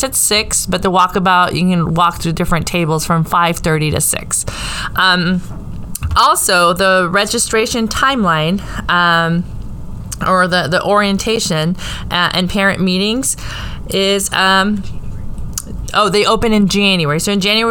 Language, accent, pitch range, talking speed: English, American, 175-205 Hz, 135 wpm